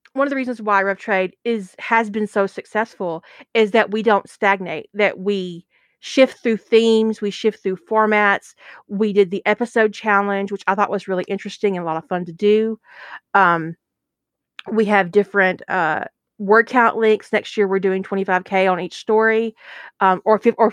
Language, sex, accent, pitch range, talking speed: English, female, American, 190-220 Hz, 190 wpm